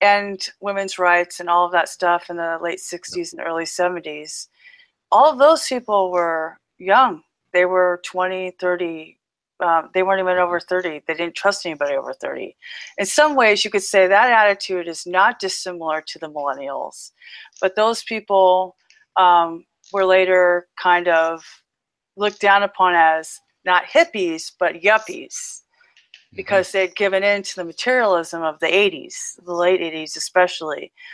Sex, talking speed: female, 155 wpm